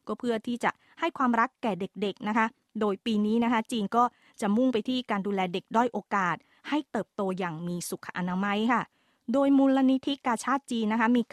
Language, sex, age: Thai, female, 20-39